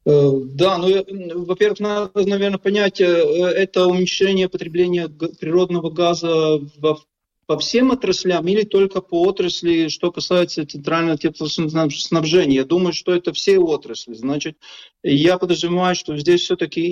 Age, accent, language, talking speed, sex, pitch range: 20-39, native, Russian, 125 wpm, male, 150-180 Hz